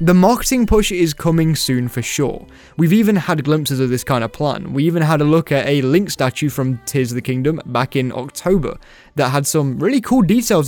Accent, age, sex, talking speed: British, 10-29, male, 225 wpm